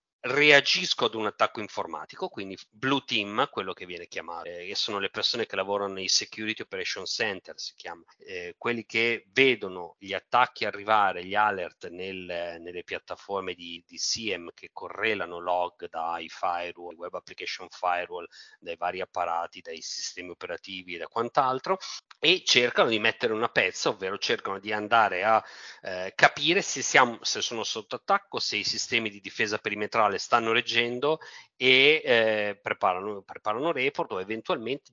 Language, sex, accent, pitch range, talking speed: Italian, male, native, 95-135 Hz, 155 wpm